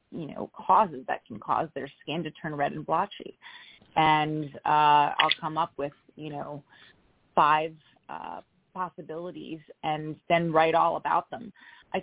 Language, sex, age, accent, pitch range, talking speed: English, female, 30-49, American, 150-185 Hz, 155 wpm